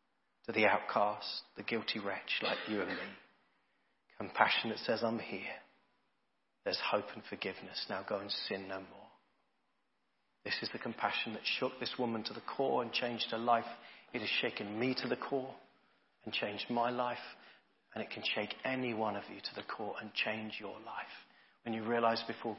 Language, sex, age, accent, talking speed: English, male, 40-59, British, 185 wpm